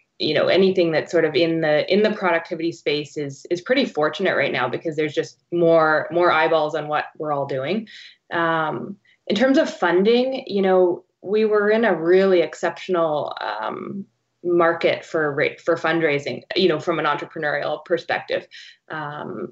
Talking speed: 165 wpm